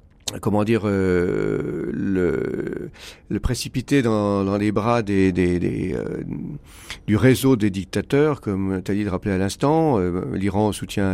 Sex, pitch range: male, 95-130 Hz